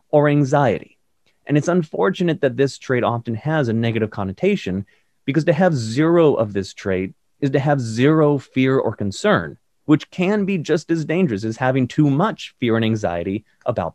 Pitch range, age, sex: 115-160 Hz, 30-49, male